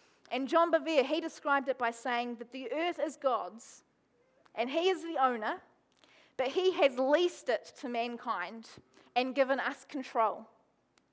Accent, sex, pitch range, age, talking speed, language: Australian, female, 240-305 Hz, 30-49, 155 wpm, English